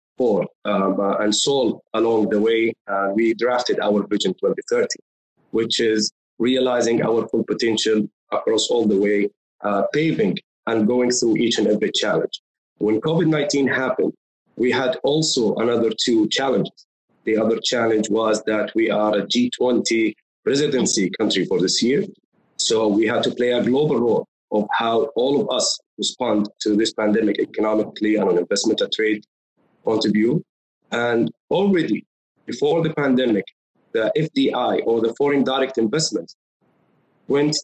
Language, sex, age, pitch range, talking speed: English, male, 30-49, 110-135 Hz, 150 wpm